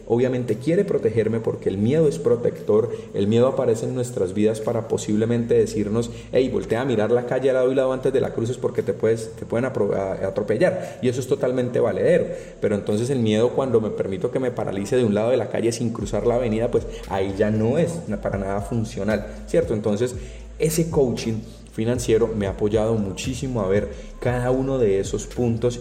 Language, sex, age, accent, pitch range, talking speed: Spanish, male, 30-49, Colombian, 105-125 Hz, 205 wpm